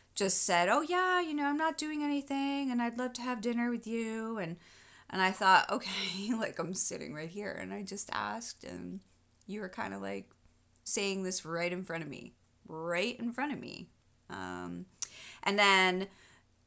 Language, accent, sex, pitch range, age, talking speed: English, American, female, 145-200 Hz, 30-49, 190 wpm